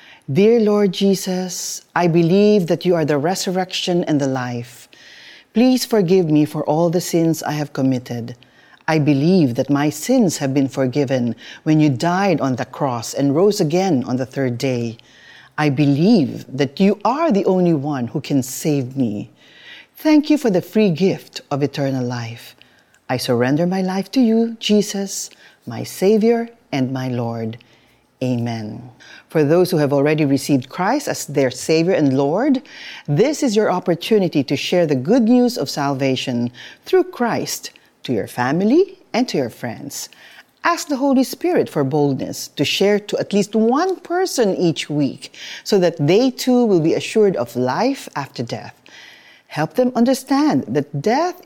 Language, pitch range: Filipino, 140-220 Hz